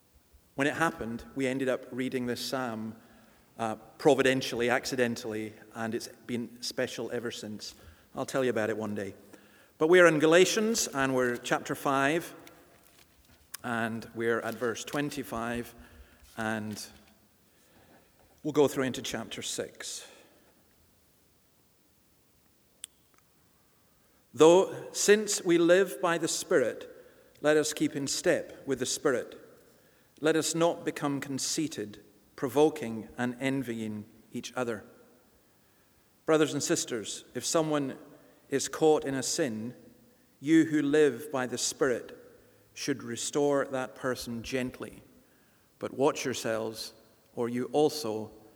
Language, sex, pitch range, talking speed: English, male, 115-150 Hz, 120 wpm